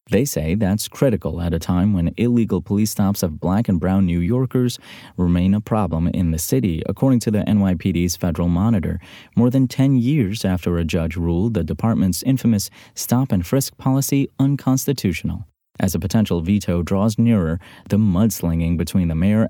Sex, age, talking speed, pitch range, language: male, 30-49, 165 wpm, 90-125 Hz, English